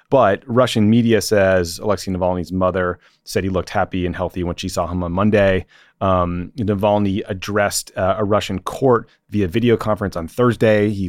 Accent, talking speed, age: American, 175 wpm, 30-49